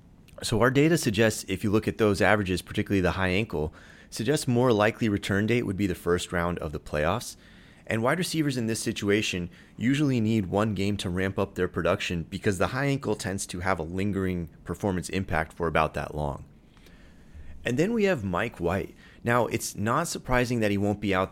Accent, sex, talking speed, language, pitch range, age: American, male, 205 wpm, English, 90-110 Hz, 30-49